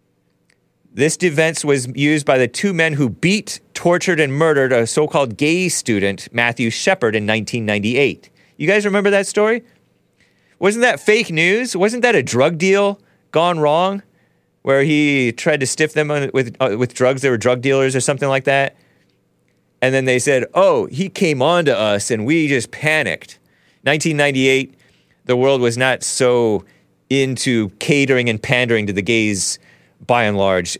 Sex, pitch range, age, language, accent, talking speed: male, 105-155 Hz, 30-49, English, American, 165 wpm